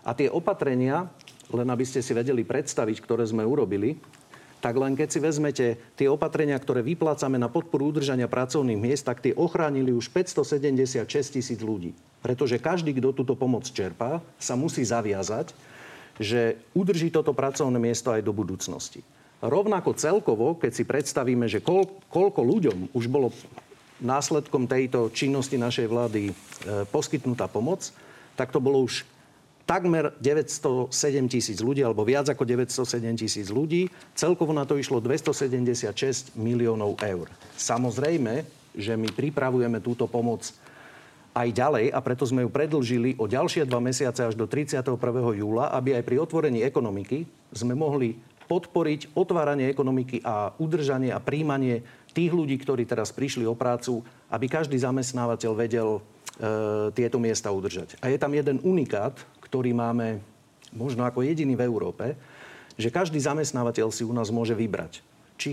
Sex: male